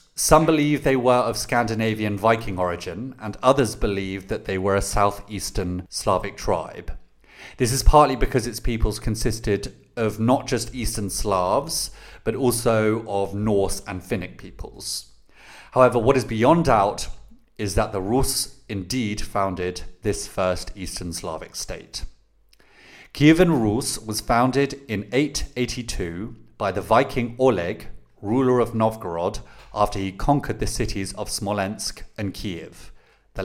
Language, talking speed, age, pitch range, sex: English, 135 wpm, 40-59, 100-125 Hz, male